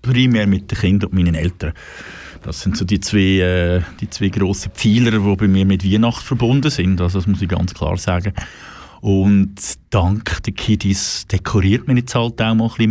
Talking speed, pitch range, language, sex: 200 wpm, 95-120 Hz, German, male